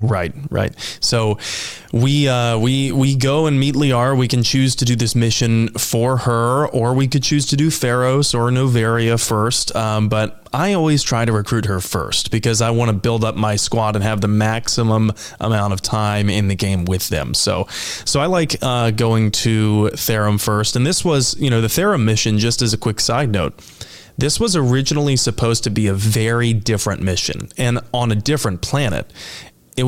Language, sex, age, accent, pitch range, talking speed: English, male, 20-39, American, 105-130 Hz, 195 wpm